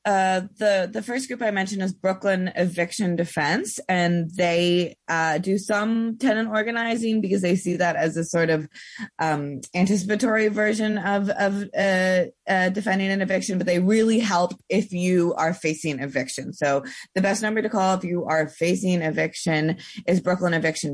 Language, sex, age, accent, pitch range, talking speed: English, female, 20-39, American, 160-195 Hz, 170 wpm